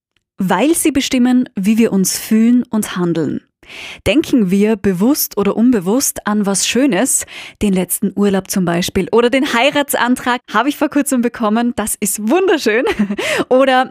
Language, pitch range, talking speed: German, 200-255 Hz, 145 wpm